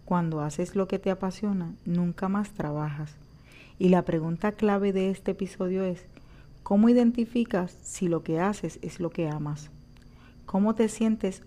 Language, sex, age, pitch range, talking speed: Spanish, female, 40-59, 160-195 Hz, 155 wpm